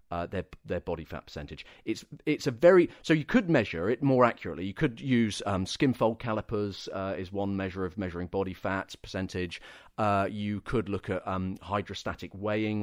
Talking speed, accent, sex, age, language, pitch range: 185 wpm, British, male, 40-59, English, 95-120 Hz